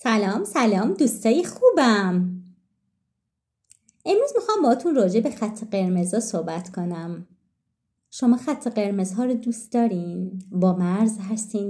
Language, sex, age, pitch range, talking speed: Persian, female, 30-49, 190-235 Hz, 120 wpm